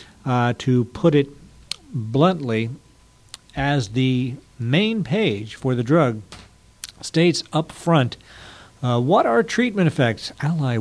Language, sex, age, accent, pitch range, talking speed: English, male, 60-79, American, 115-165 Hz, 115 wpm